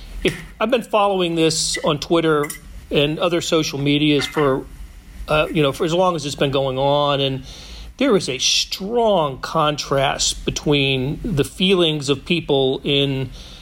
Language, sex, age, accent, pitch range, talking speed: English, male, 40-59, American, 140-180 Hz, 150 wpm